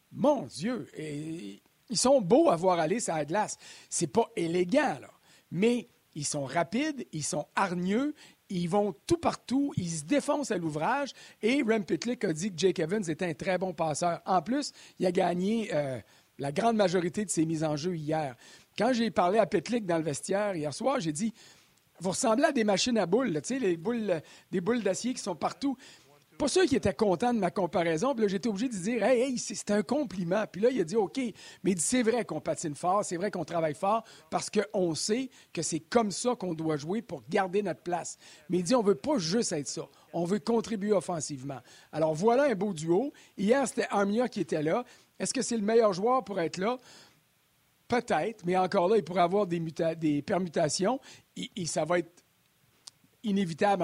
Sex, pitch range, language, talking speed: male, 170-230 Hz, French, 220 wpm